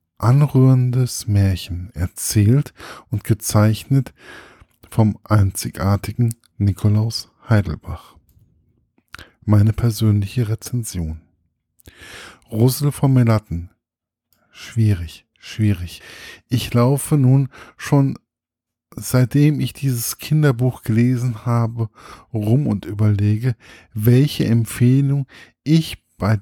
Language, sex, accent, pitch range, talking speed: German, male, German, 105-130 Hz, 75 wpm